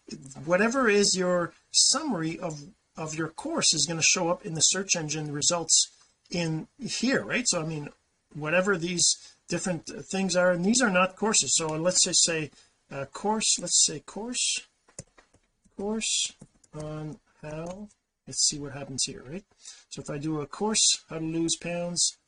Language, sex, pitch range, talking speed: English, male, 160-200 Hz, 165 wpm